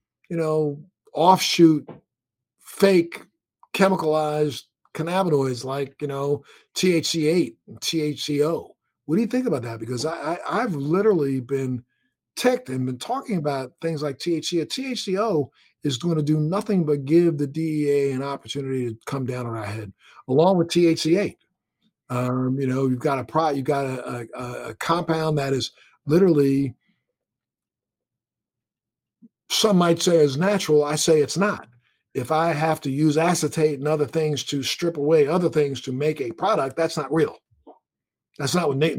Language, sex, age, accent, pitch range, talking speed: English, male, 50-69, American, 135-165 Hz, 155 wpm